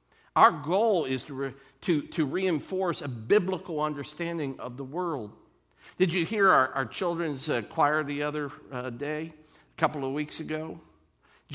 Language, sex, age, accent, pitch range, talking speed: English, male, 50-69, American, 155-210 Hz, 165 wpm